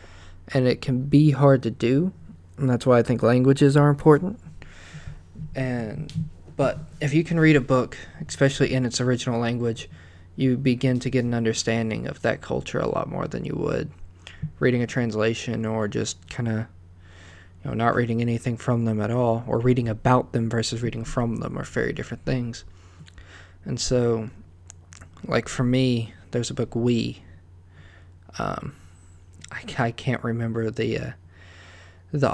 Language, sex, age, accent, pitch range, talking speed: English, male, 20-39, American, 90-125 Hz, 160 wpm